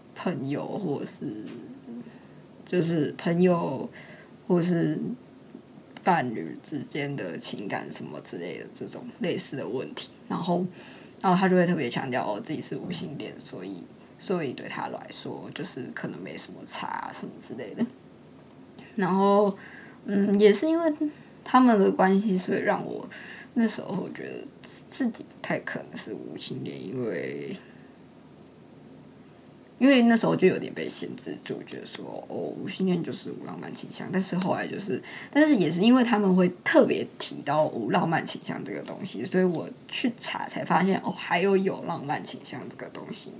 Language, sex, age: Chinese, female, 20-39